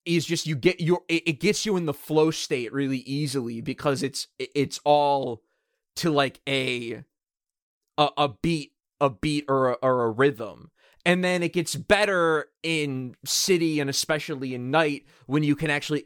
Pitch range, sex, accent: 130-155 Hz, male, American